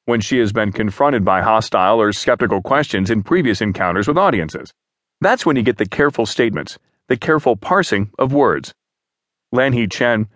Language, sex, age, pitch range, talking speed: English, male, 40-59, 105-135 Hz, 170 wpm